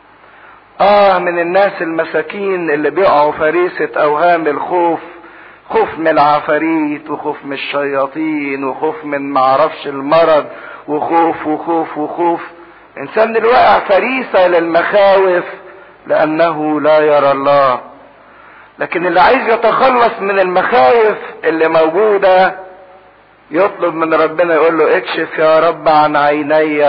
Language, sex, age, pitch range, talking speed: English, male, 50-69, 150-185 Hz, 105 wpm